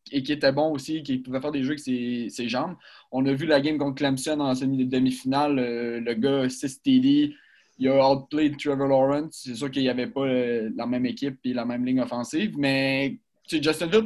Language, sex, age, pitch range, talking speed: French, male, 20-39, 135-170 Hz, 225 wpm